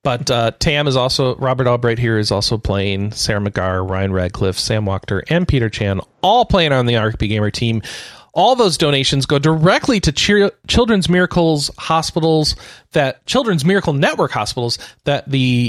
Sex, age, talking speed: male, 40-59, 170 wpm